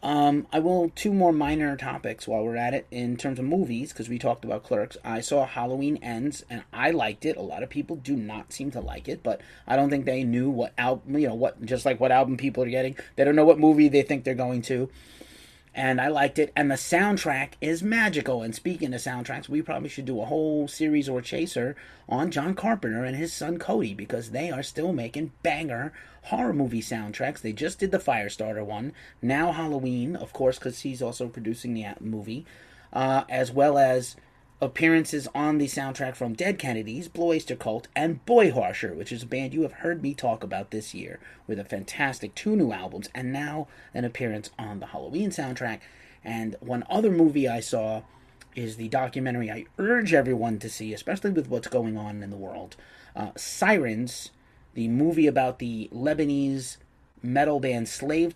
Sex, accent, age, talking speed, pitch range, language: male, American, 30-49, 200 wpm, 120-150 Hz, English